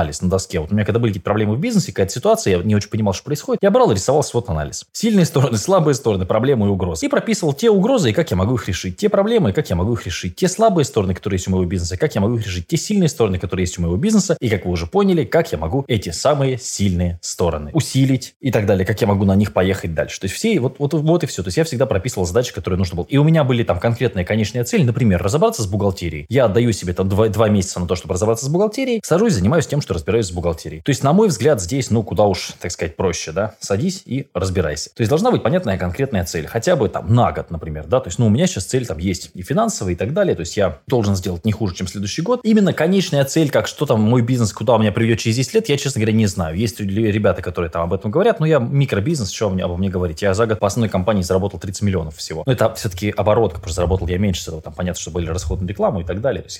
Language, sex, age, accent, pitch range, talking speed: Russian, male, 20-39, native, 95-135 Hz, 280 wpm